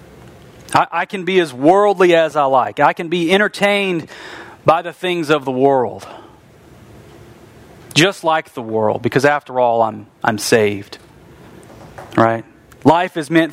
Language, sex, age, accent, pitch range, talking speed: English, male, 40-59, American, 115-165 Hz, 140 wpm